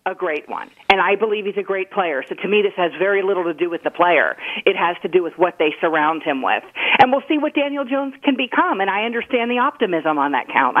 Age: 40-59